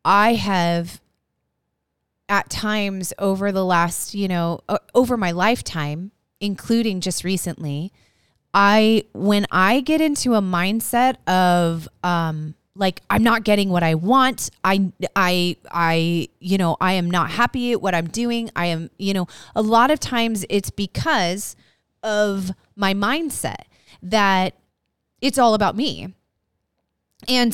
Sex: female